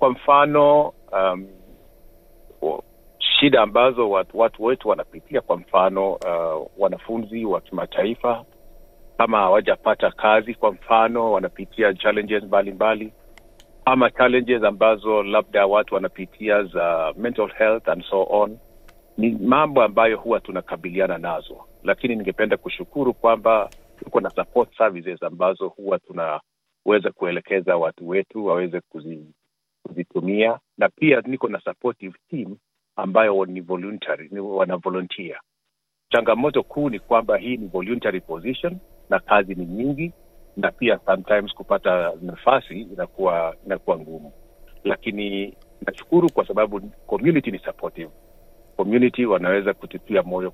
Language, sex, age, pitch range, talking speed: Swahili, male, 50-69, 95-115 Hz, 120 wpm